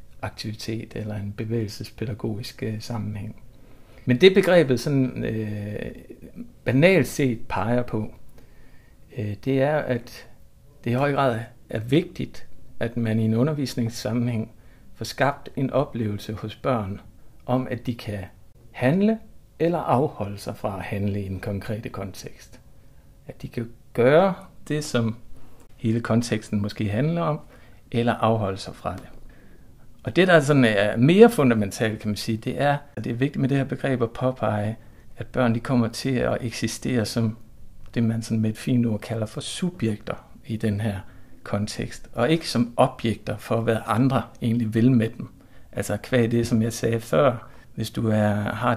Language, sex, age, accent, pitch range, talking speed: Danish, male, 60-79, native, 110-125 Hz, 160 wpm